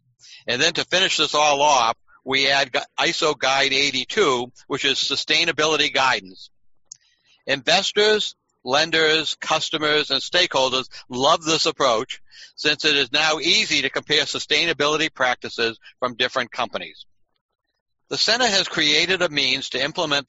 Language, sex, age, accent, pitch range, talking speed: English, male, 60-79, American, 125-155 Hz, 130 wpm